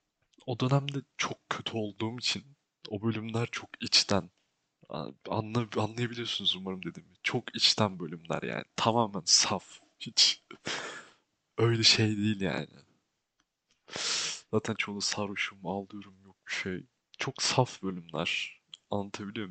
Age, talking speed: 30-49, 105 wpm